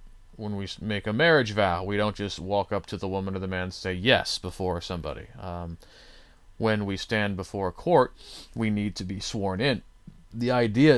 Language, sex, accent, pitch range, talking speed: English, male, American, 90-115 Hz, 200 wpm